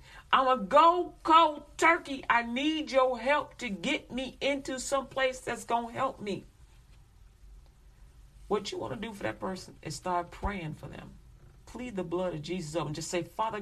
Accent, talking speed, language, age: American, 190 wpm, English, 40-59